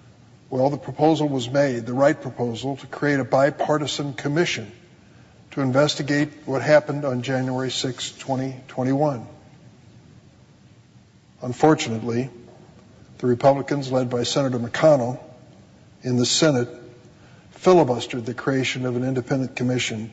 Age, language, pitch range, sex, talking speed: 50-69, English, 120-140 Hz, male, 115 wpm